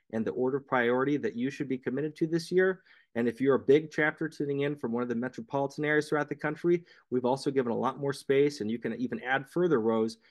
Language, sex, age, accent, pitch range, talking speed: English, male, 30-49, American, 125-150 Hz, 255 wpm